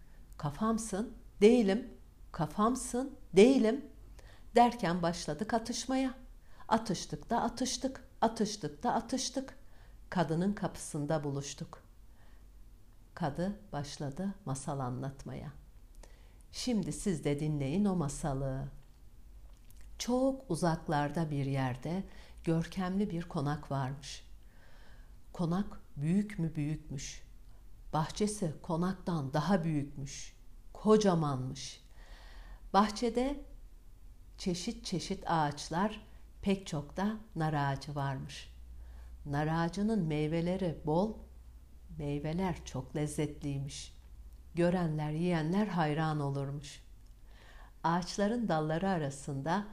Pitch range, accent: 140-200 Hz, native